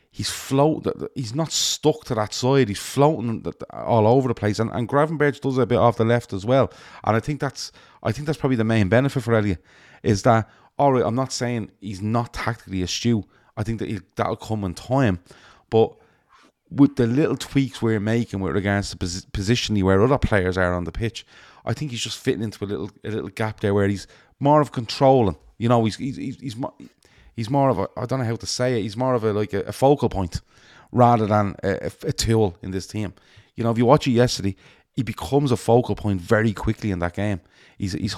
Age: 30-49